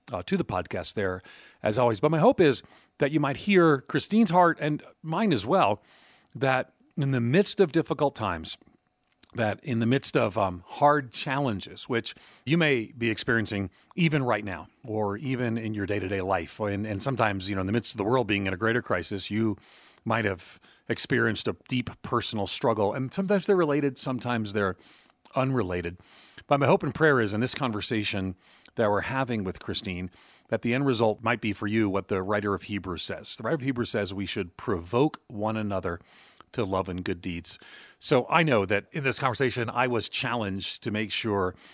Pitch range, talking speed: 100-130 Hz, 200 wpm